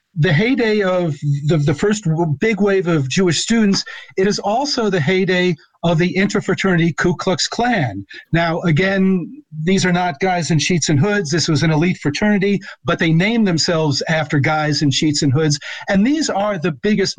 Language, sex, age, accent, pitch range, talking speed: English, male, 50-69, American, 165-205 Hz, 185 wpm